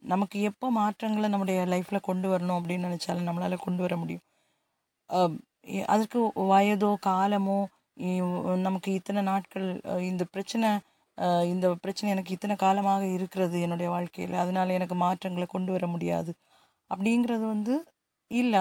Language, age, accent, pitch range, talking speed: Tamil, 20-39, native, 185-225 Hz, 125 wpm